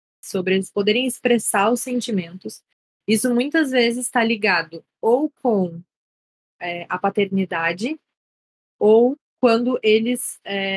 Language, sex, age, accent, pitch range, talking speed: Portuguese, female, 20-39, Brazilian, 190-230 Hz, 100 wpm